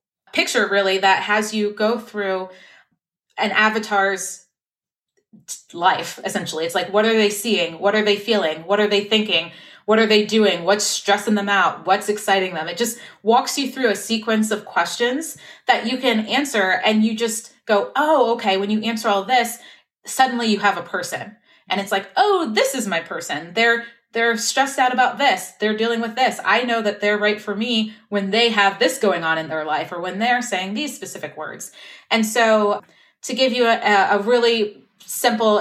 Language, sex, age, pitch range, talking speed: English, female, 20-39, 190-225 Hz, 195 wpm